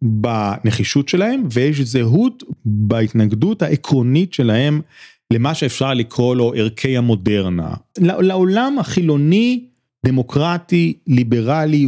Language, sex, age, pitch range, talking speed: Hebrew, male, 30-49, 115-165 Hz, 85 wpm